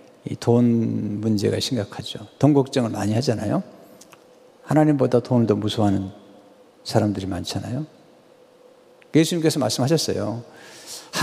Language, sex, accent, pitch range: Chinese, male, Korean, 115-175 Hz